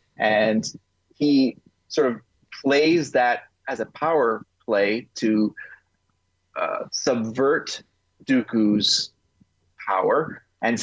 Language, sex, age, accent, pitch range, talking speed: English, male, 30-49, American, 105-135 Hz, 90 wpm